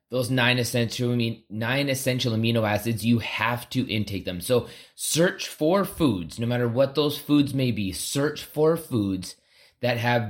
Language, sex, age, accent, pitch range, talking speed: English, male, 30-49, American, 110-130 Hz, 150 wpm